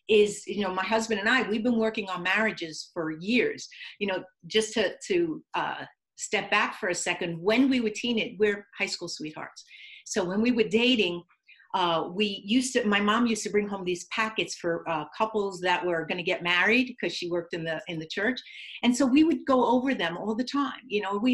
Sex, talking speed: female, 225 wpm